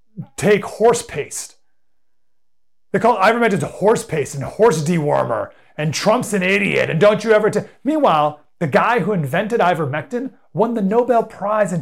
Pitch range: 145-210 Hz